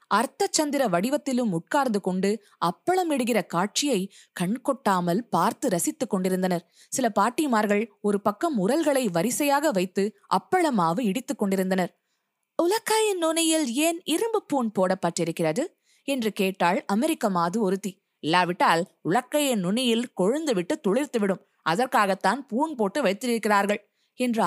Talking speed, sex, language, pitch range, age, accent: 85 wpm, female, Tamil, 195-280 Hz, 20-39, native